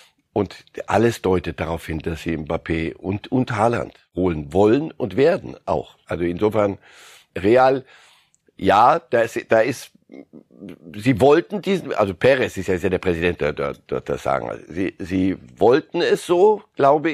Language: German